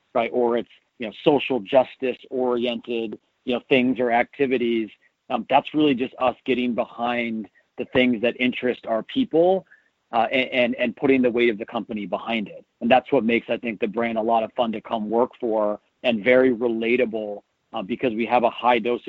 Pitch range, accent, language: 115-130 Hz, American, English